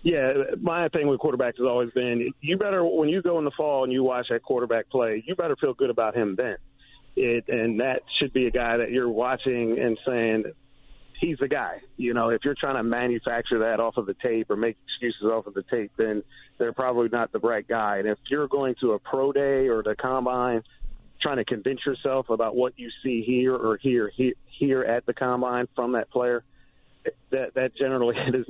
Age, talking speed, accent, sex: 40-59, 220 wpm, American, male